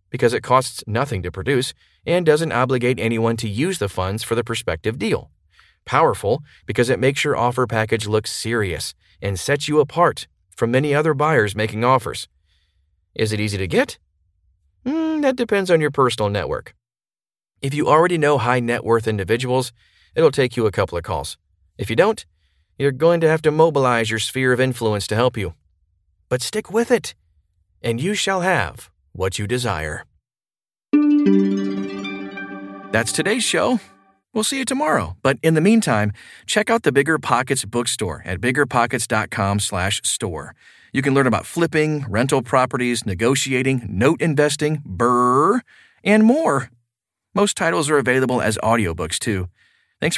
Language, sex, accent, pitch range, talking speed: English, male, American, 100-150 Hz, 155 wpm